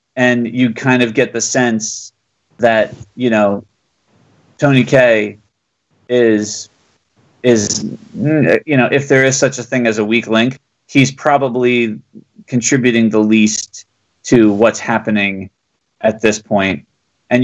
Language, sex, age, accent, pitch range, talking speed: English, male, 30-49, American, 105-125 Hz, 130 wpm